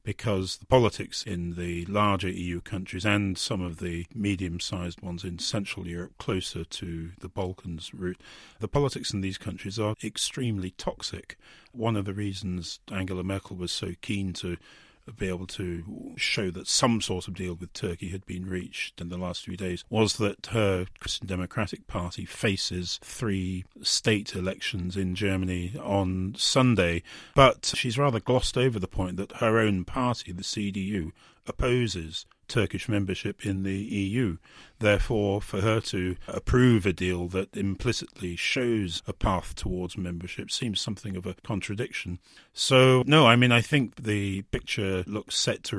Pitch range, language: 90-110 Hz, English